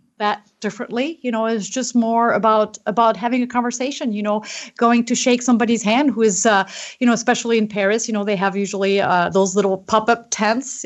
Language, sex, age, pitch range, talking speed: English, female, 30-49, 185-235 Hz, 210 wpm